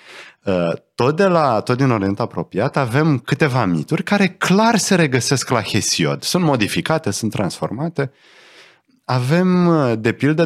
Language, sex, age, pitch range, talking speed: Romanian, male, 30-49, 95-155 Hz, 130 wpm